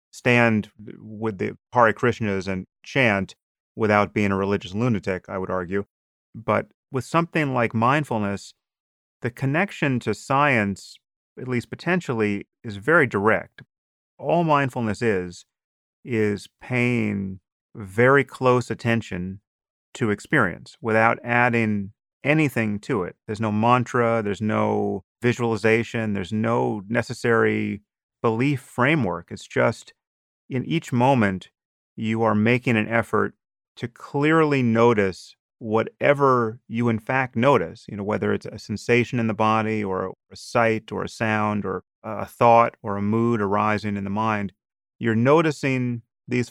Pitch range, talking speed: 105-125 Hz, 130 wpm